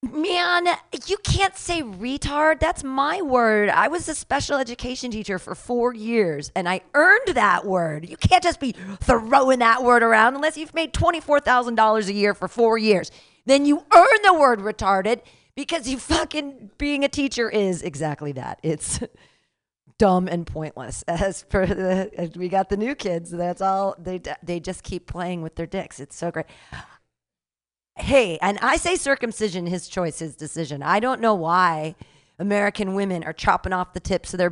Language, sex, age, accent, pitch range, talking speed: English, female, 40-59, American, 175-275 Hz, 180 wpm